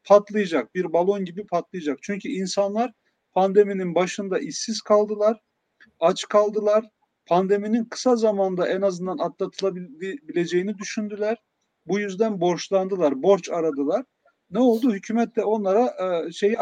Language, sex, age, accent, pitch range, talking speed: German, male, 40-59, Turkish, 180-220 Hz, 110 wpm